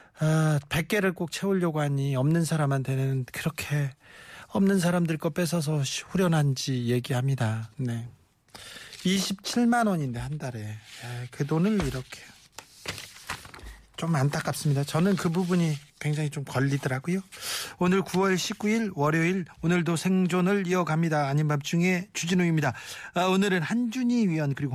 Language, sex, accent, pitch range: Korean, male, native, 140-190 Hz